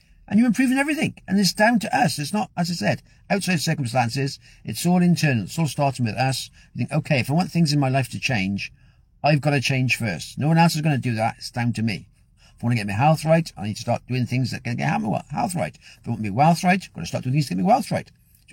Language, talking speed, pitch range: English, 295 wpm, 115-155 Hz